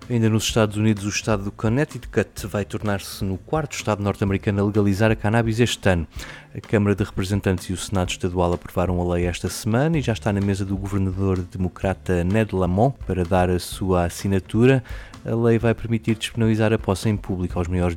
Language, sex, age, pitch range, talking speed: Portuguese, male, 20-39, 95-115 Hz, 195 wpm